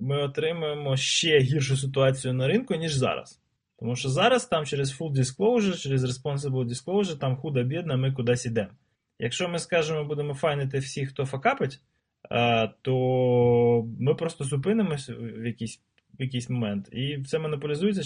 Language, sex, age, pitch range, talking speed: Ukrainian, male, 20-39, 120-150 Hz, 145 wpm